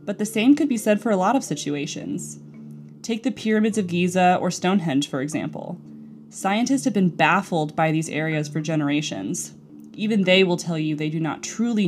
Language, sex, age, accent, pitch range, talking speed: English, female, 20-39, American, 155-200 Hz, 190 wpm